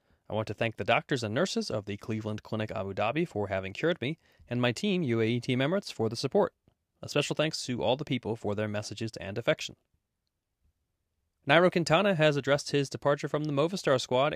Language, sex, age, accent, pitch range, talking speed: English, male, 30-49, American, 105-150 Hz, 205 wpm